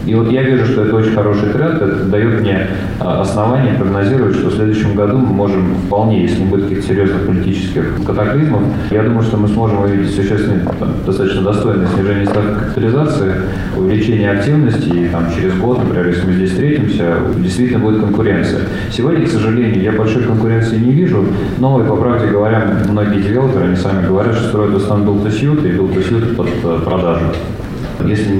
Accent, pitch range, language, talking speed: native, 95-115 Hz, Russian, 175 wpm